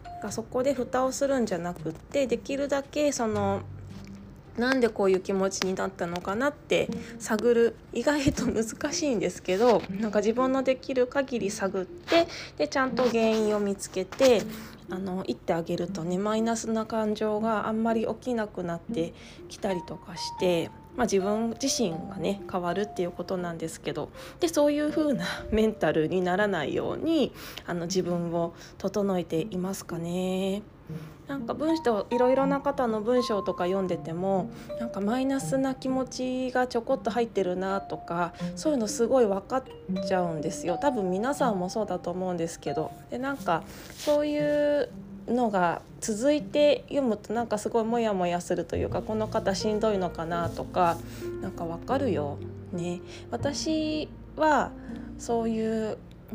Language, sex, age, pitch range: Japanese, female, 20-39, 180-250 Hz